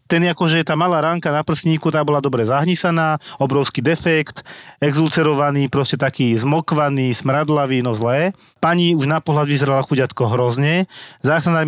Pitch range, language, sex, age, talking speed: 125-150 Hz, Slovak, male, 40-59, 150 wpm